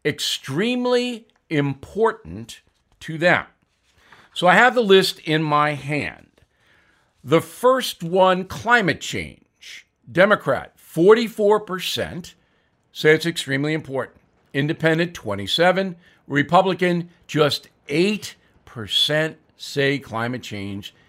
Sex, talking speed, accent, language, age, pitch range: male, 95 wpm, American, English, 50-69, 115-180 Hz